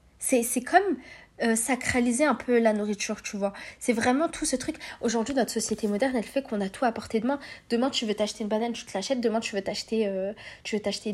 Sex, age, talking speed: female, 20-39, 250 wpm